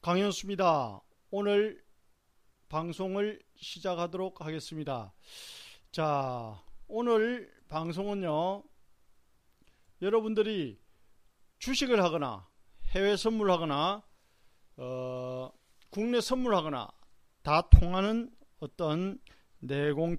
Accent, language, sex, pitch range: native, Korean, male, 140-215 Hz